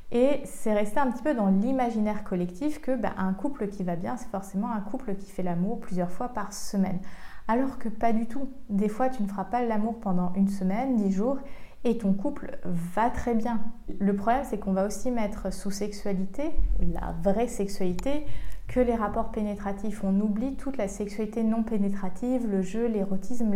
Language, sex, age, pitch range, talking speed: French, female, 20-39, 195-240 Hz, 195 wpm